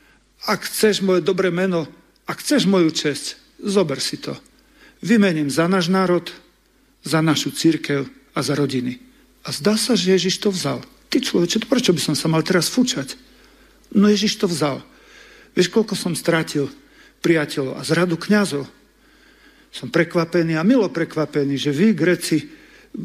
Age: 50-69